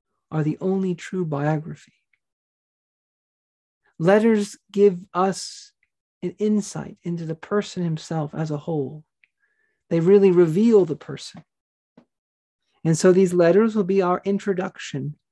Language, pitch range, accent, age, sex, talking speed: English, 160-210 Hz, American, 40-59, male, 120 wpm